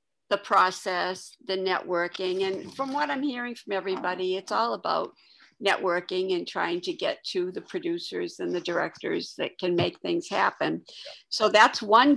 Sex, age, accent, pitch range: female, 60-79, American, 185-235 Hz